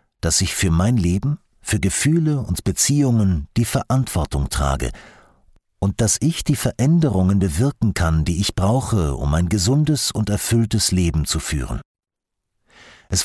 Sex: male